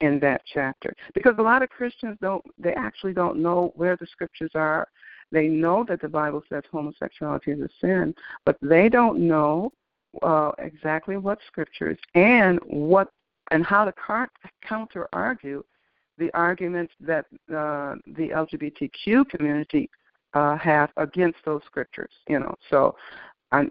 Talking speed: 150 wpm